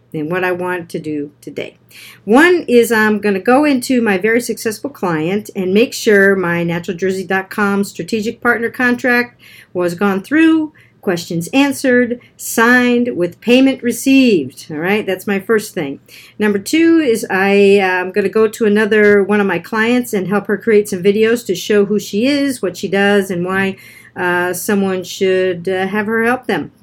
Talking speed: 170 wpm